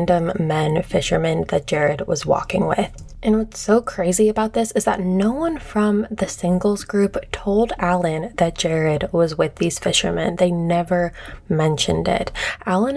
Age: 20-39